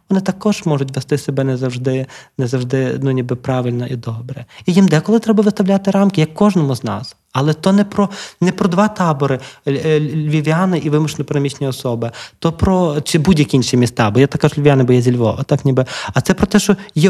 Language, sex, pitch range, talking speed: Ukrainian, male, 130-165 Hz, 210 wpm